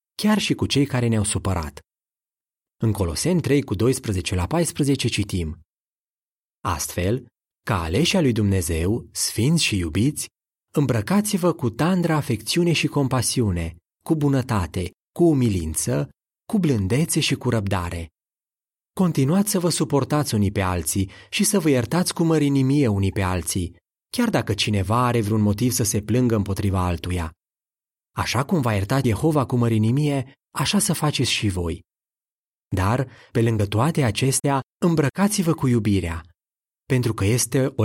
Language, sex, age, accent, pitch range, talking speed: Romanian, male, 30-49, native, 95-145 Hz, 140 wpm